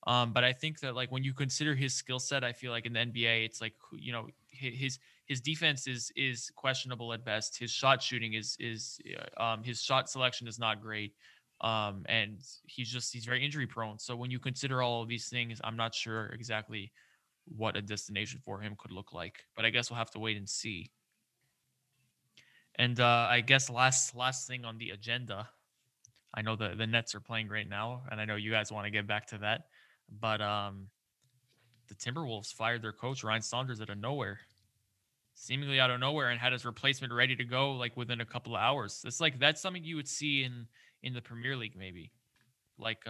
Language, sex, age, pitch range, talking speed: English, male, 20-39, 110-130 Hz, 210 wpm